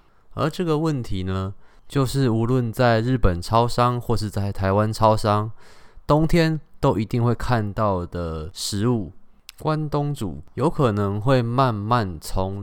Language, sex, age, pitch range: Chinese, male, 20-39, 95-125 Hz